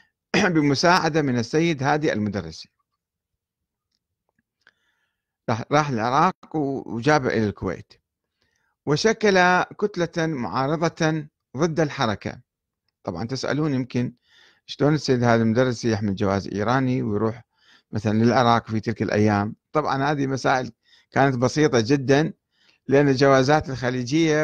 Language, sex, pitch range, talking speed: Arabic, male, 115-165 Hz, 100 wpm